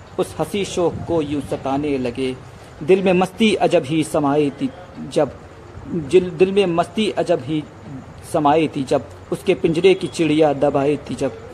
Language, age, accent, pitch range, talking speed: Hindi, 40-59, native, 135-165 Hz, 155 wpm